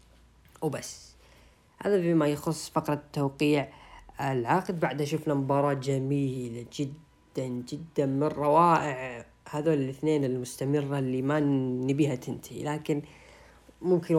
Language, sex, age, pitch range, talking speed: Arabic, female, 10-29, 140-160 Hz, 100 wpm